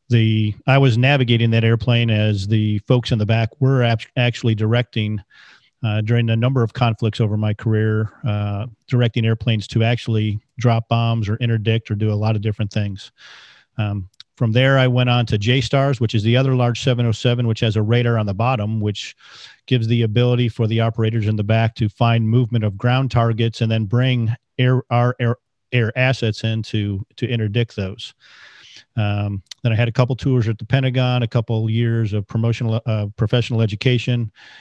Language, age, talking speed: English, 40-59, 190 wpm